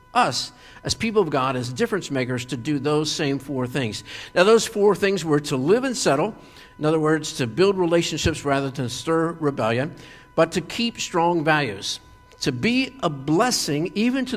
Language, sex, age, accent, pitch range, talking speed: English, male, 50-69, American, 125-170 Hz, 185 wpm